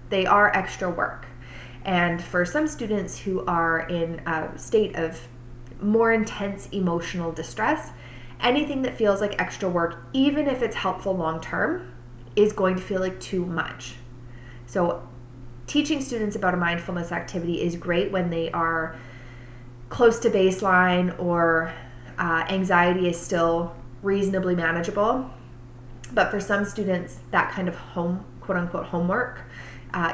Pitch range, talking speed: 155-200 Hz, 135 wpm